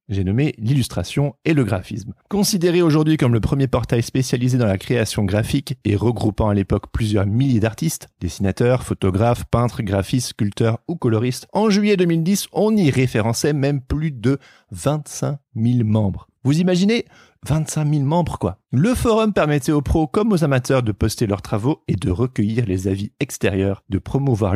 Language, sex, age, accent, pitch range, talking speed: French, male, 40-59, French, 105-140 Hz, 170 wpm